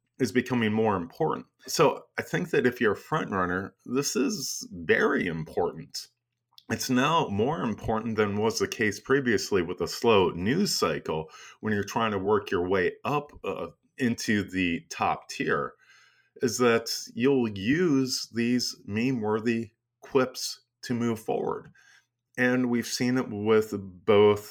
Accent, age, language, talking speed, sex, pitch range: American, 30-49, English, 145 wpm, male, 100-125 Hz